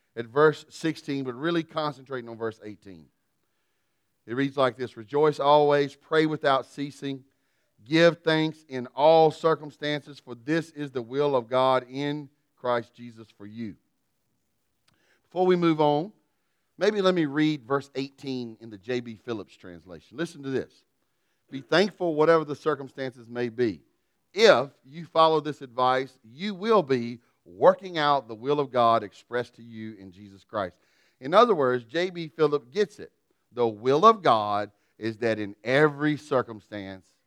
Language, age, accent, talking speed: English, 40-59, American, 155 wpm